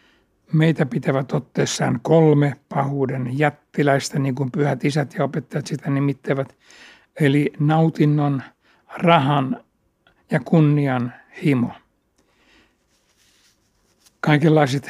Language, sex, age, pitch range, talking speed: Finnish, male, 60-79, 130-150 Hz, 85 wpm